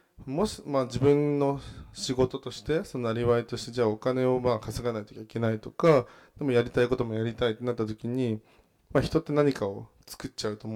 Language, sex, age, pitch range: Japanese, male, 20-39, 110-145 Hz